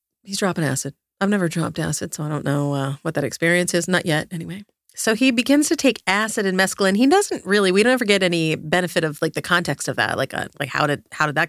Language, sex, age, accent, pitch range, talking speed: English, female, 30-49, American, 155-200 Hz, 260 wpm